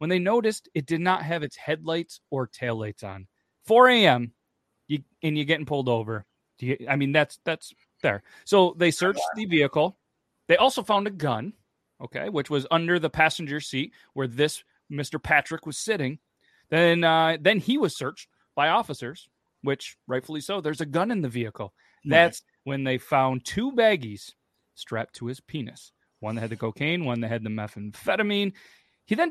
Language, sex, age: English, male, 30-49